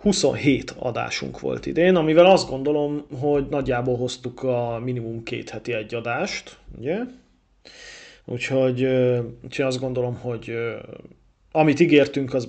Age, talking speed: 30-49, 120 wpm